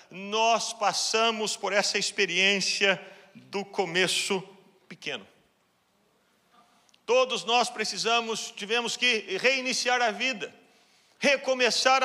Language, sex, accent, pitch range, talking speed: Portuguese, male, Brazilian, 225-270 Hz, 85 wpm